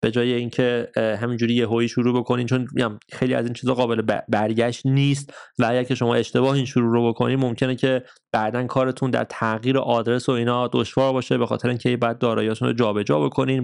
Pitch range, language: 120-135 Hz, Persian